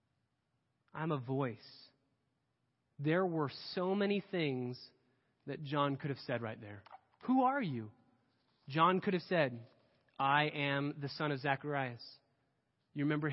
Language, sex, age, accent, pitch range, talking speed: English, male, 30-49, American, 130-175 Hz, 135 wpm